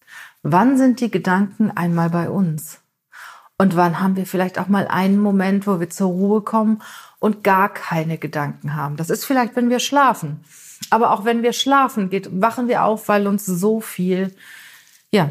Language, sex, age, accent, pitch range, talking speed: German, female, 40-59, German, 185-225 Hz, 180 wpm